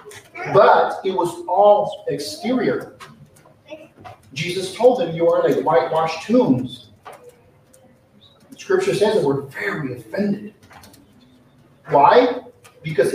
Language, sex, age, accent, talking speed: English, male, 50-69, American, 95 wpm